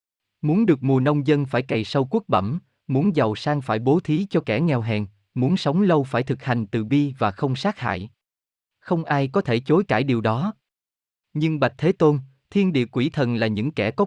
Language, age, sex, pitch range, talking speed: Vietnamese, 20-39, male, 115-165 Hz, 220 wpm